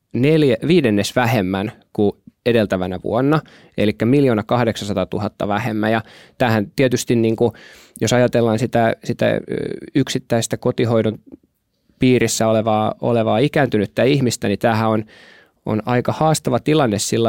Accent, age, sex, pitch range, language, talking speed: native, 20-39, male, 105-125 Hz, Finnish, 120 wpm